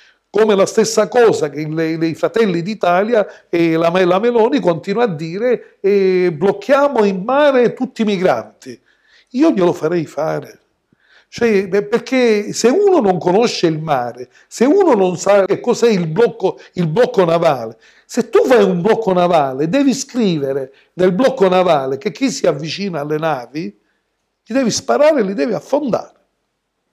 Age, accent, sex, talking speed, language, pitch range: 60-79, native, male, 150 wpm, Italian, 165-235 Hz